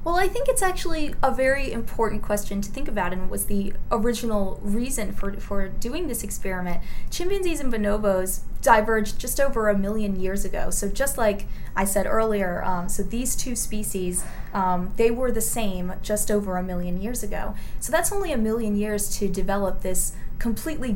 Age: 20-39